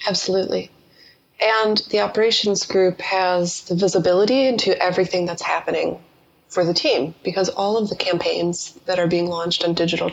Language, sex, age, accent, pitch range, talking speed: English, female, 20-39, American, 170-195 Hz, 155 wpm